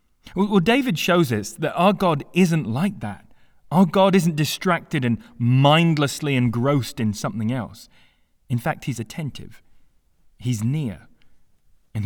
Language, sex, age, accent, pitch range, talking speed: English, male, 30-49, British, 105-150 Hz, 135 wpm